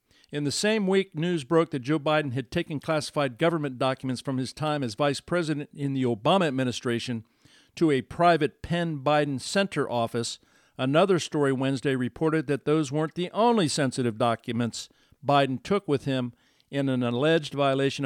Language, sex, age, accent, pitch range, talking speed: English, male, 50-69, American, 130-165 Hz, 165 wpm